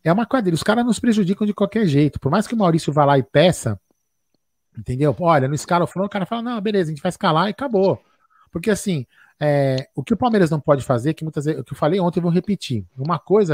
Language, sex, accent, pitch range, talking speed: Portuguese, male, Brazilian, 145-195 Hz, 255 wpm